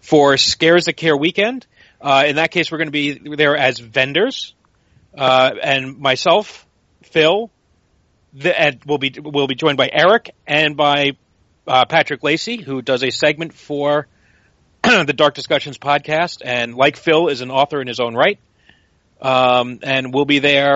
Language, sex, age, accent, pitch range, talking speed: English, male, 40-59, American, 125-150 Hz, 170 wpm